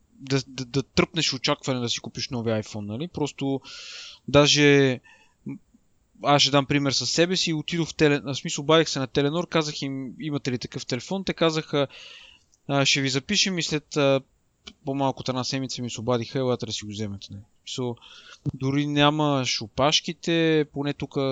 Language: Bulgarian